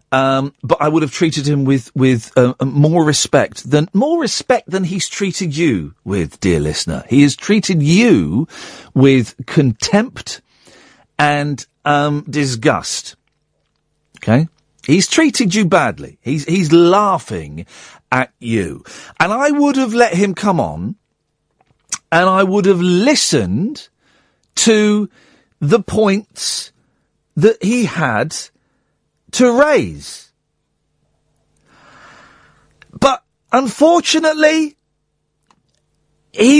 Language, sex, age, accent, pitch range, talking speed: English, male, 50-69, British, 130-210 Hz, 105 wpm